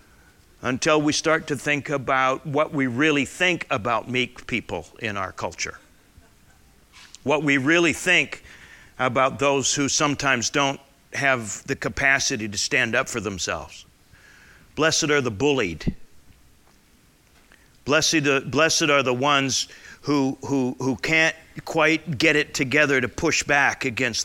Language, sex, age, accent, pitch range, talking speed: English, male, 50-69, American, 115-160 Hz, 130 wpm